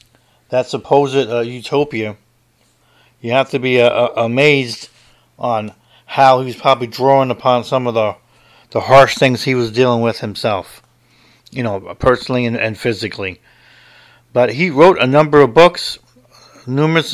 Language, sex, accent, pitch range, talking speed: English, male, American, 120-140 Hz, 150 wpm